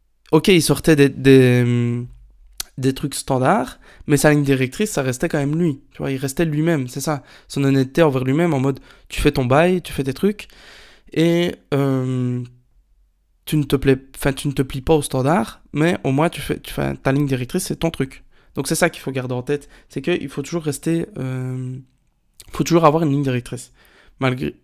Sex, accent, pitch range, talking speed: male, French, 130-150 Hz, 175 wpm